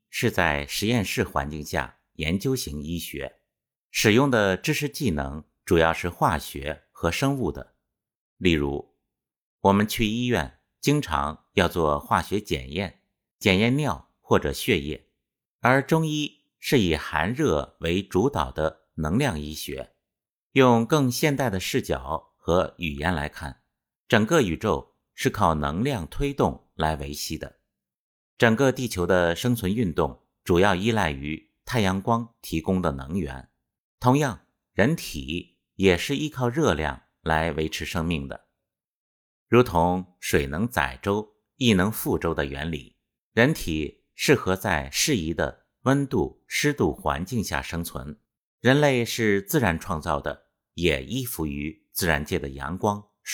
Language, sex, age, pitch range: Chinese, male, 50-69, 75-115 Hz